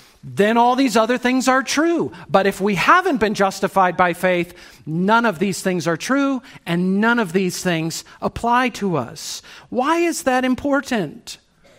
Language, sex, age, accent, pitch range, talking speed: English, male, 50-69, American, 170-235 Hz, 170 wpm